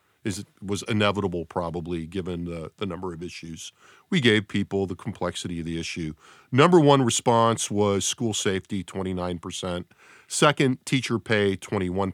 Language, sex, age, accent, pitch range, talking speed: English, male, 40-59, American, 95-120 Hz, 150 wpm